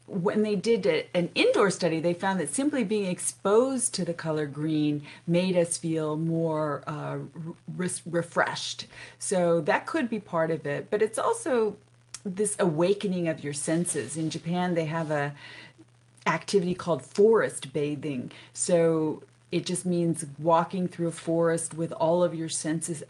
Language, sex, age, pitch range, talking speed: English, female, 40-59, 150-180 Hz, 155 wpm